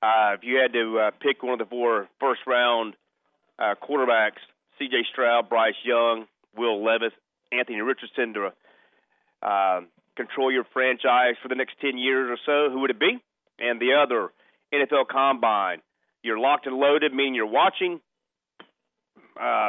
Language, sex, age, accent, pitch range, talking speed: English, male, 40-59, American, 115-140 Hz, 160 wpm